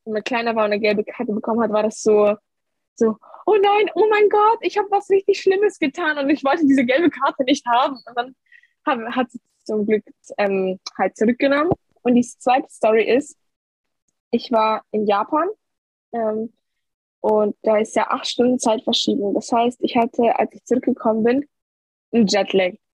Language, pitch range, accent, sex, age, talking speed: German, 220-305 Hz, German, female, 10-29, 185 wpm